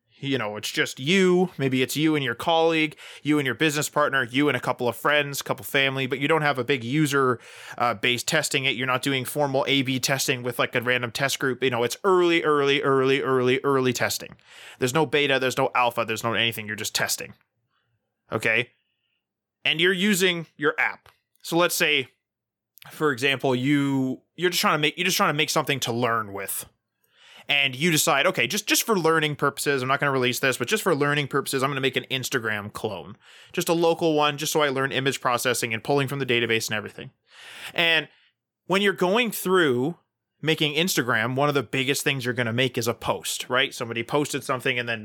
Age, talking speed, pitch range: 20-39, 220 wpm, 125-155 Hz